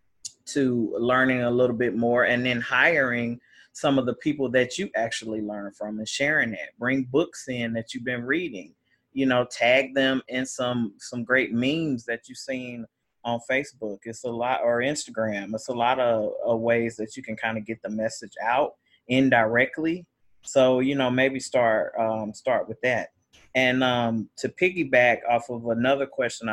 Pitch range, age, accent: 115-130 Hz, 30-49, American